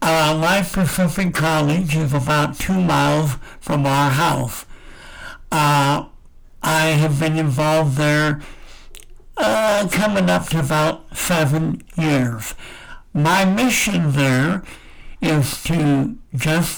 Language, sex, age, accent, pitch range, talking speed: English, male, 60-79, American, 145-180 Hz, 105 wpm